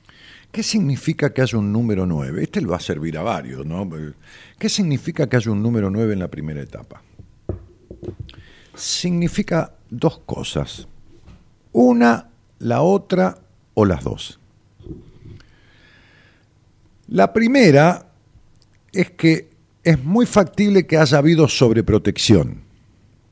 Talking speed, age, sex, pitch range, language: 120 wpm, 50-69, male, 105-145 Hz, Spanish